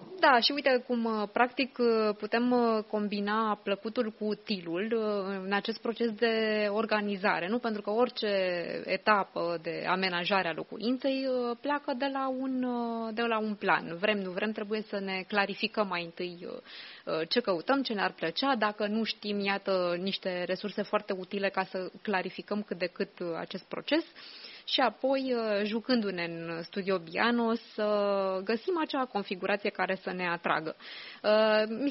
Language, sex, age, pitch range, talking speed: Romanian, female, 20-39, 190-240 Hz, 140 wpm